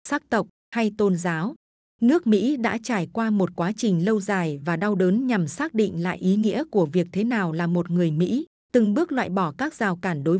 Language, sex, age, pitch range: Vietnamese, female, 20-39, 180-225 Hz